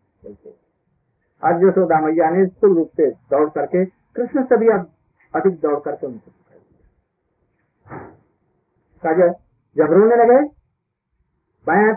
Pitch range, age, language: 185-235 Hz, 50-69, Hindi